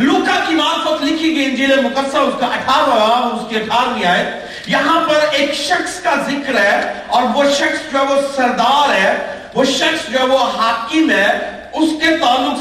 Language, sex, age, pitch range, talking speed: Urdu, male, 40-59, 230-310 Hz, 165 wpm